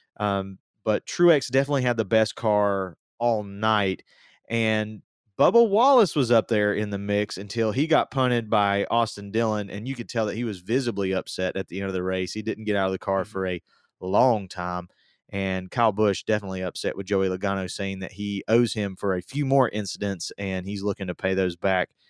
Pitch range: 95-115 Hz